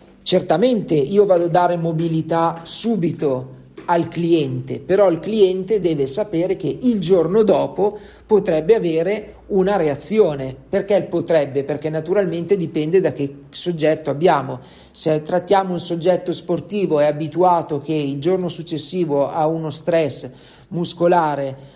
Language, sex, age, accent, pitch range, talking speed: Italian, male, 40-59, native, 145-190 Hz, 125 wpm